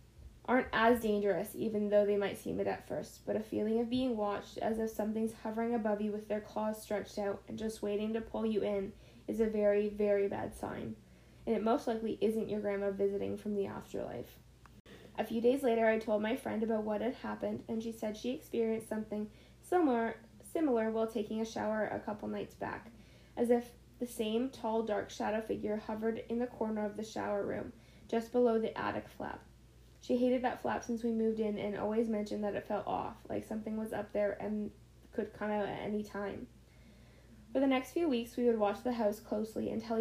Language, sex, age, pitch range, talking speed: English, female, 10-29, 210-230 Hz, 210 wpm